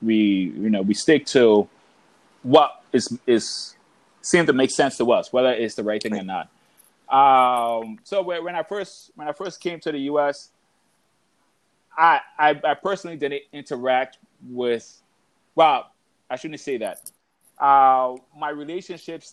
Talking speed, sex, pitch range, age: 155 wpm, male, 120-155 Hz, 30-49